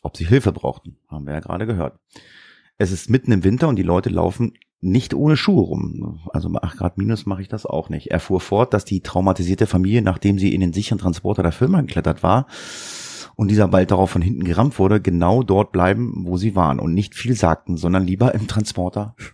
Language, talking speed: German, 215 wpm